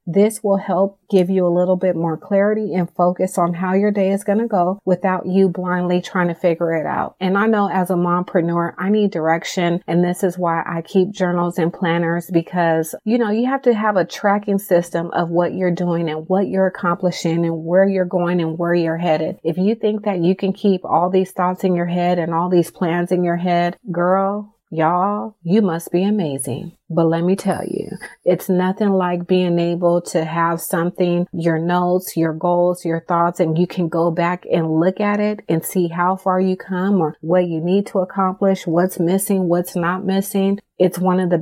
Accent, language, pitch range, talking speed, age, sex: American, English, 170-190 Hz, 215 wpm, 30-49, female